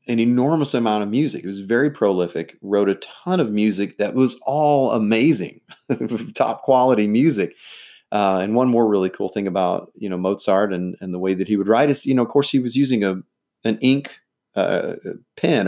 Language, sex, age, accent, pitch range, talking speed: English, male, 30-49, American, 100-140 Hz, 205 wpm